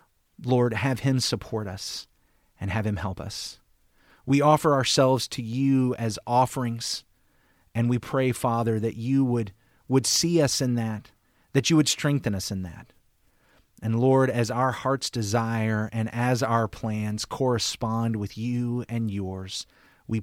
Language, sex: English, male